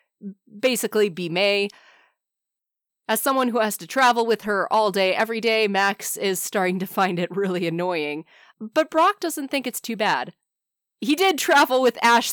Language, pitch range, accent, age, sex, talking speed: English, 185-250 Hz, American, 20-39, female, 170 wpm